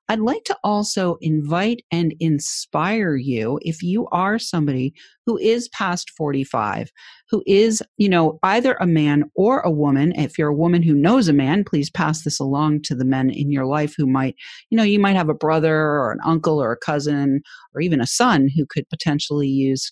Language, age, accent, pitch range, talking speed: English, 40-59, American, 145-200 Hz, 200 wpm